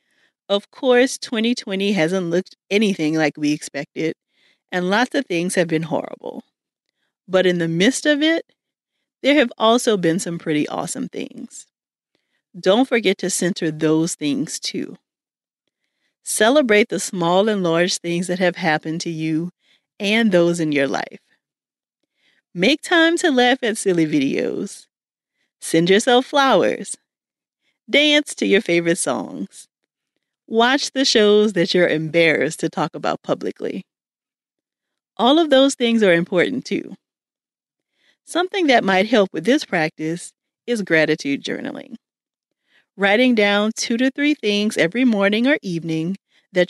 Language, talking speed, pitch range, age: English, 135 wpm, 170-245 Hz, 40-59